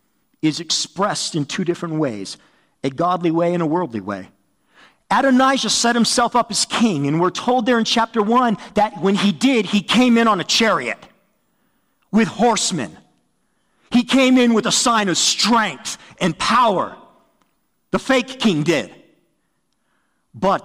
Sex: male